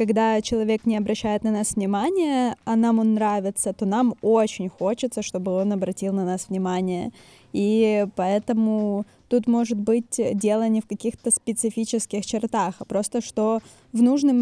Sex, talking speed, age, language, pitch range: female, 155 wpm, 20-39, Ukrainian, 210-245 Hz